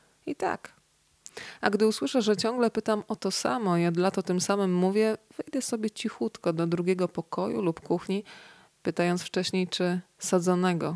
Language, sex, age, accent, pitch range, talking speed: Polish, female, 20-39, native, 175-200 Hz, 160 wpm